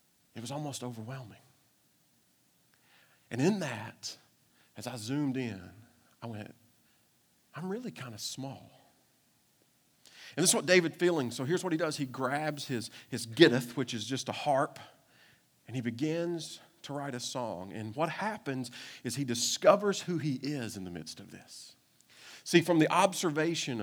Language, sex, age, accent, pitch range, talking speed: English, male, 40-59, American, 115-165 Hz, 160 wpm